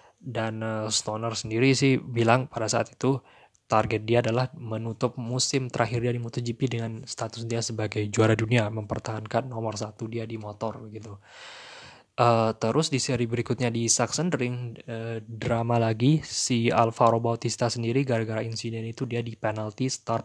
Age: 20-39